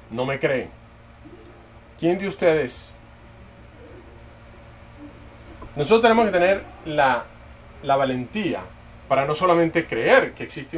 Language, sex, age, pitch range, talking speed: English, male, 30-49, 115-155 Hz, 105 wpm